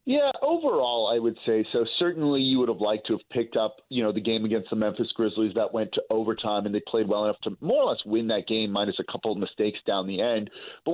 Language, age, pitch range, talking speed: English, 30-49, 110-135 Hz, 265 wpm